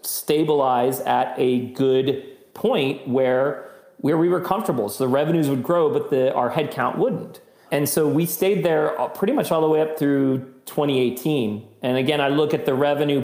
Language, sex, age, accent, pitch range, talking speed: English, male, 40-59, American, 130-165 Hz, 185 wpm